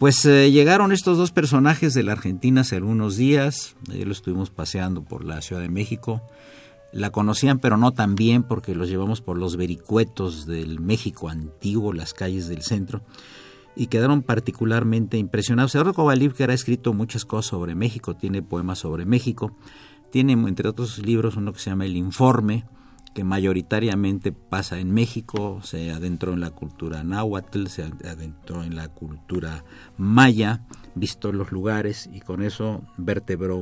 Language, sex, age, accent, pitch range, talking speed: Spanish, male, 50-69, Mexican, 95-120 Hz, 165 wpm